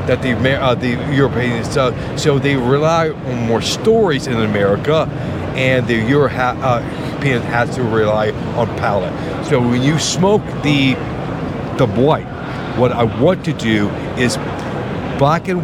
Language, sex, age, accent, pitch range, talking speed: English, male, 50-69, American, 125-150 Hz, 140 wpm